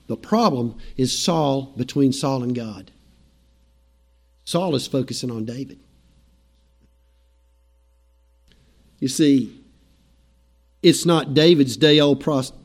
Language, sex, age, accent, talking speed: English, male, 50-69, American, 90 wpm